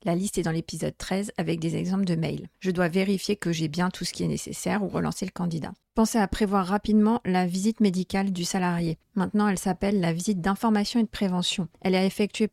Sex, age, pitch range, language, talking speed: female, 40-59, 180-205 Hz, French, 225 wpm